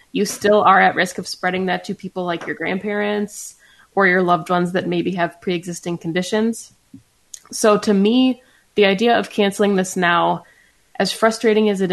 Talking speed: 175 wpm